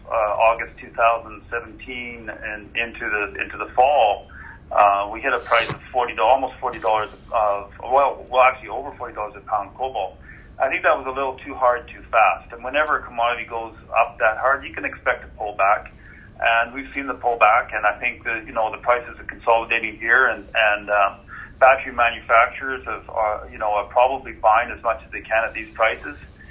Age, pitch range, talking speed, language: 40-59, 105-120 Hz, 200 wpm, English